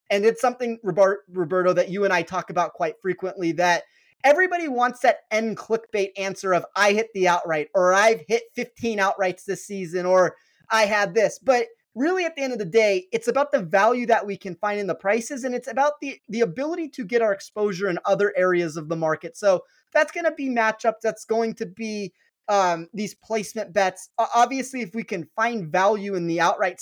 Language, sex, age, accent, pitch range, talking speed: English, male, 30-49, American, 180-225 Hz, 210 wpm